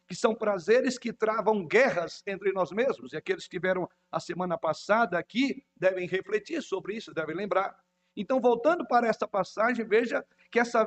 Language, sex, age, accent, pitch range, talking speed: Portuguese, male, 60-79, Brazilian, 195-255 Hz, 170 wpm